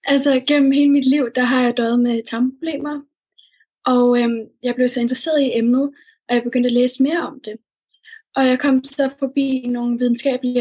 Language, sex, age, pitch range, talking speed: Danish, female, 20-39, 240-275 Hz, 190 wpm